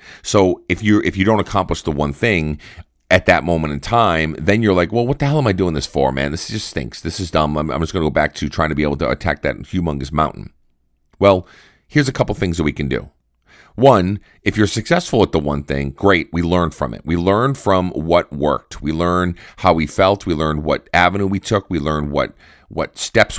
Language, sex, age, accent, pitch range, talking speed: English, male, 40-59, American, 75-105 Hz, 240 wpm